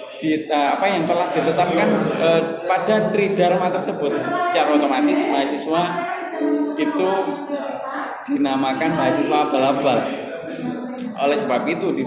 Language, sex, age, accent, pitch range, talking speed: Indonesian, male, 20-39, native, 155-190 Hz, 105 wpm